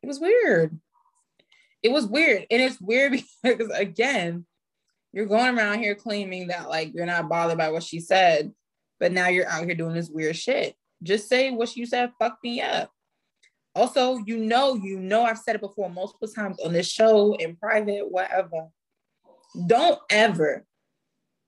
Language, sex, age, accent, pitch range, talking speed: English, female, 20-39, American, 170-230 Hz, 170 wpm